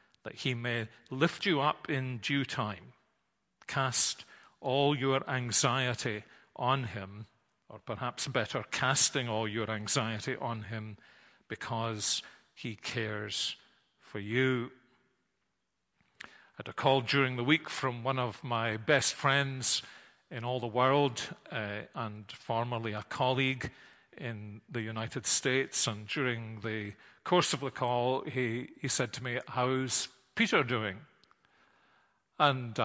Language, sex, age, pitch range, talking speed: English, male, 40-59, 115-140 Hz, 130 wpm